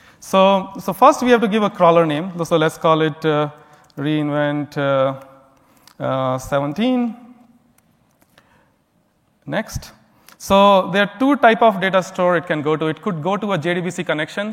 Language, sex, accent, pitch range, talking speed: English, male, Indian, 150-200 Hz, 155 wpm